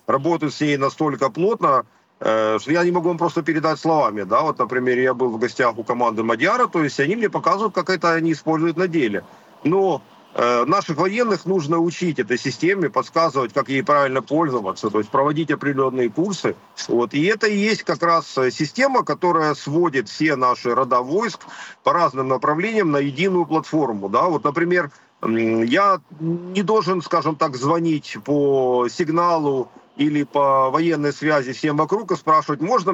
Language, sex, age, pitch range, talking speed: Ukrainian, male, 40-59, 135-175 Hz, 155 wpm